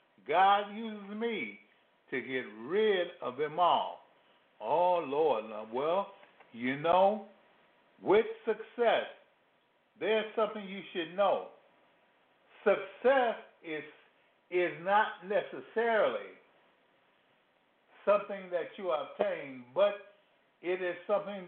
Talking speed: 95 wpm